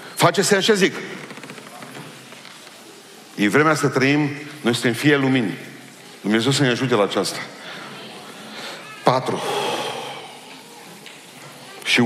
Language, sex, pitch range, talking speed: Romanian, male, 95-125 Hz, 100 wpm